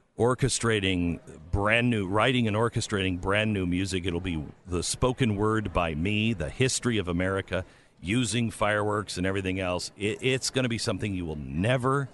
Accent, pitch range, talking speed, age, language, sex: American, 90-110 Hz, 165 wpm, 50-69, English, male